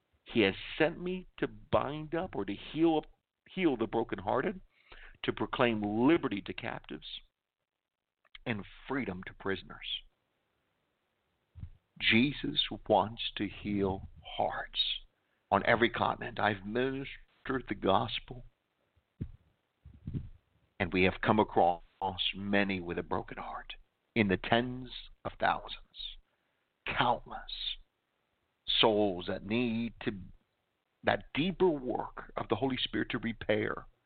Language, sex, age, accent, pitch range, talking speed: English, male, 50-69, American, 100-125 Hz, 110 wpm